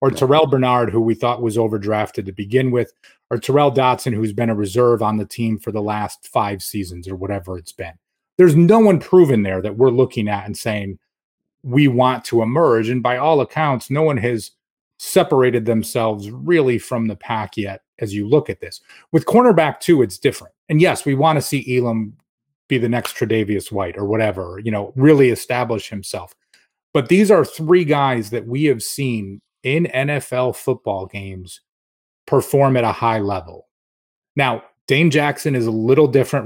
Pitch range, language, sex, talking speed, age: 110-145 Hz, English, male, 185 wpm, 30-49